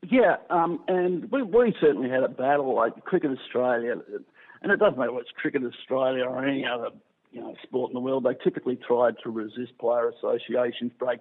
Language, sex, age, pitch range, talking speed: English, male, 50-69, 125-195 Hz, 200 wpm